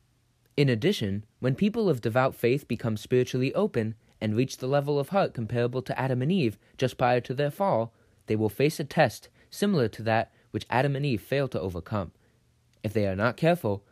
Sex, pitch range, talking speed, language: male, 105-140 Hz, 200 wpm, English